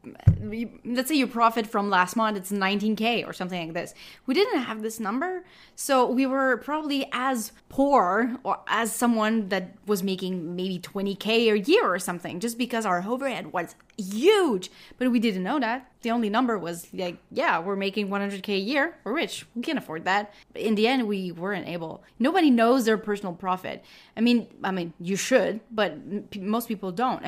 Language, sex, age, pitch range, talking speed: English, female, 30-49, 190-240 Hz, 185 wpm